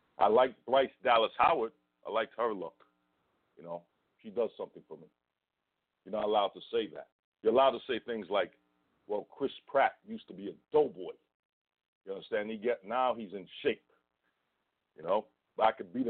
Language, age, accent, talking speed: English, 50-69, American, 185 wpm